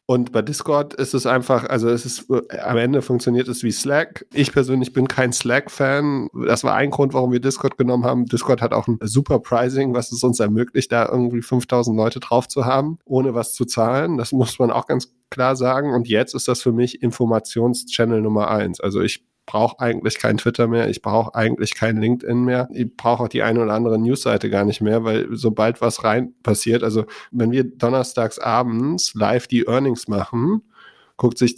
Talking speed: 200 wpm